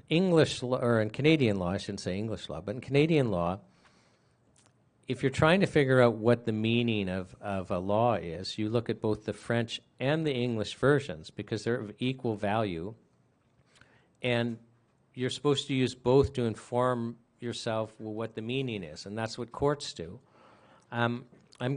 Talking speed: 175 wpm